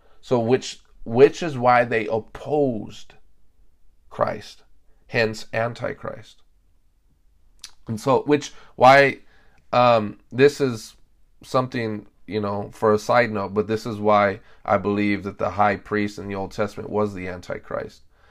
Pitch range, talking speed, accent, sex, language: 105-130 Hz, 135 wpm, American, male, English